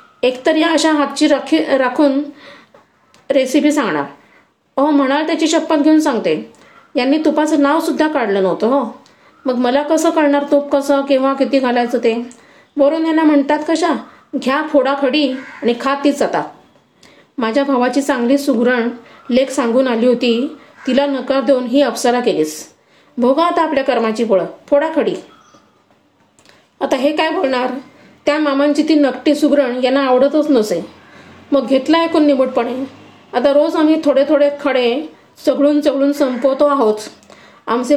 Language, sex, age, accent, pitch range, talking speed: Marathi, female, 30-49, native, 255-295 Hz, 135 wpm